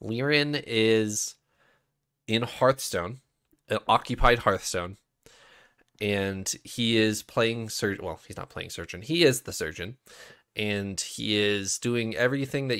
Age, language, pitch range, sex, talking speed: 20-39, English, 95-115 Hz, male, 125 wpm